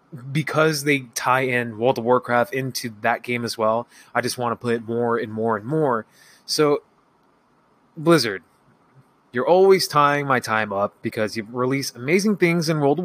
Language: English